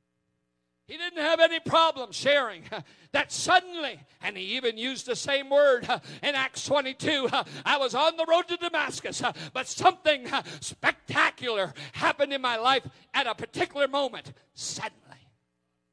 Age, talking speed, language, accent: 50-69, 160 wpm, English, American